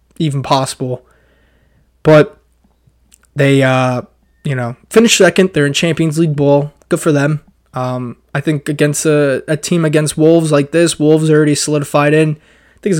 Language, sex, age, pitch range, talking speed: English, male, 20-39, 130-155 Hz, 165 wpm